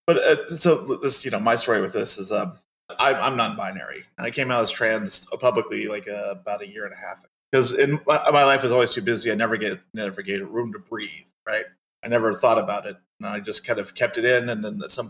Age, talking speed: 30-49, 255 wpm